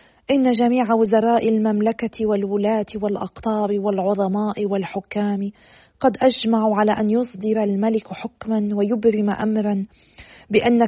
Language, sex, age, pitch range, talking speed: Arabic, female, 40-59, 195-225 Hz, 100 wpm